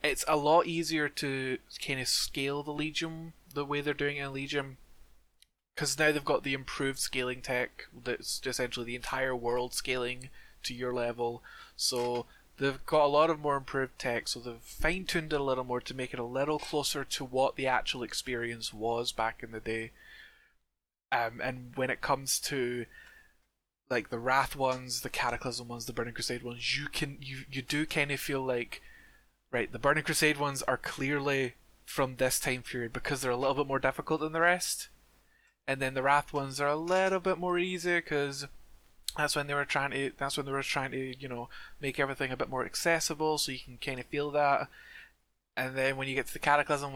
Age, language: 20-39, English